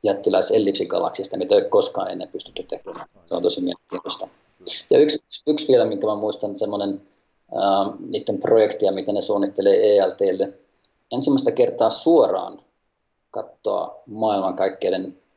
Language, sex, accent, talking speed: Finnish, male, native, 115 wpm